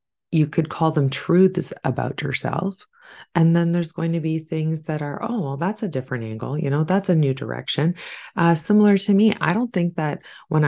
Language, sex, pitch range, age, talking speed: English, female, 145-180 Hz, 30-49, 210 wpm